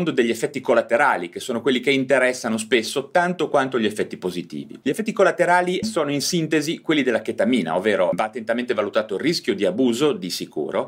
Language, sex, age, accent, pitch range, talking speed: Italian, male, 30-49, native, 105-175 Hz, 180 wpm